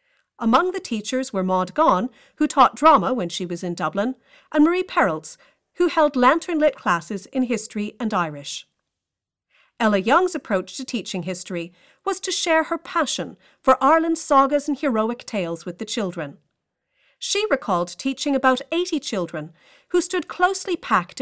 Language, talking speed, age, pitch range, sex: English, 155 wpm, 40-59, 195-315 Hz, female